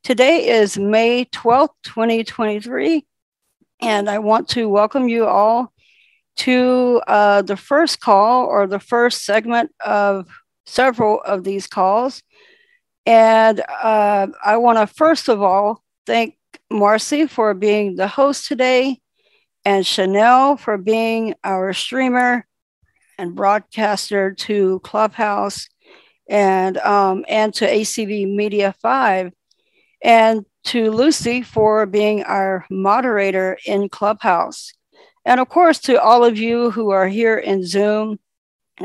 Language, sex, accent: English, female, American